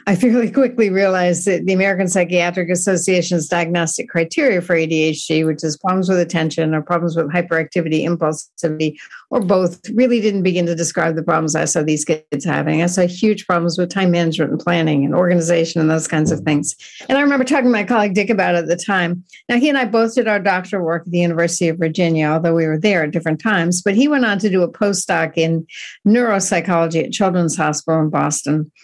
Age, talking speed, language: 60-79, 210 wpm, English